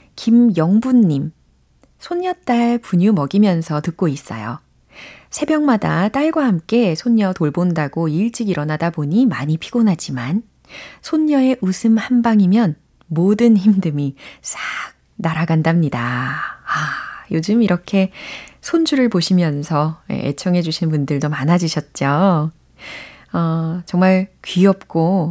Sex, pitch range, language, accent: female, 160-220 Hz, Korean, native